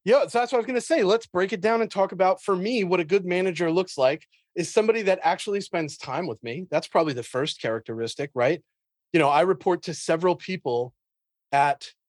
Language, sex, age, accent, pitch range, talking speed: English, male, 30-49, American, 145-215 Hz, 230 wpm